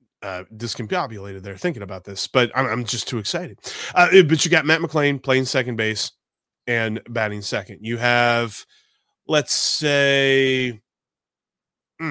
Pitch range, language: 120-145 Hz, English